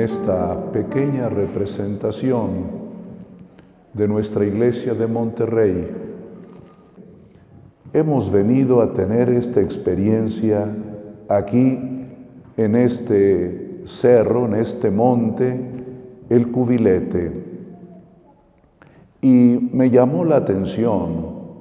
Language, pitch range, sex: Spanish, 110-140 Hz, male